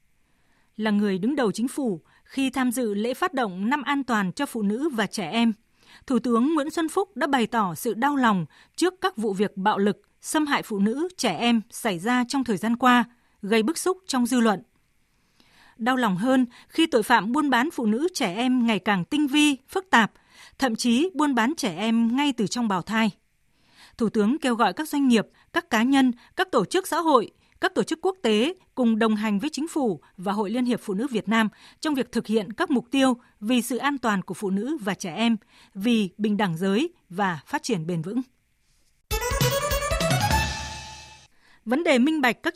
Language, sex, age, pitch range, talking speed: Vietnamese, female, 20-39, 215-280 Hz, 210 wpm